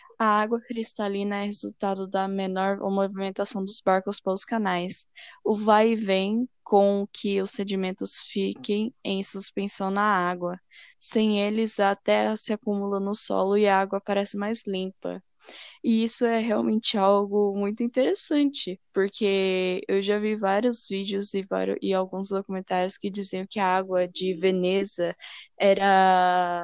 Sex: female